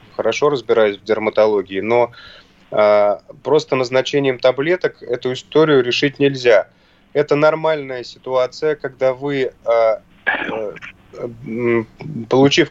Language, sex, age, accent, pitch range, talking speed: Russian, male, 20-39, native, 120-150 Hz, 85 wpm